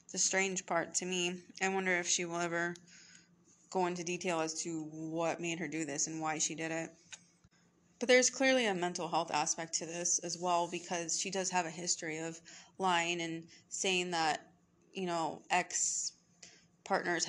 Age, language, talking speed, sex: 20-39, English, 175 wpm, female